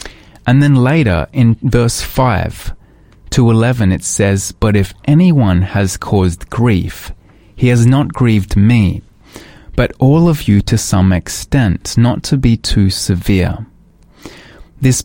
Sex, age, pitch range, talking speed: male, 20-39, 100-130 Hz, 135 wpm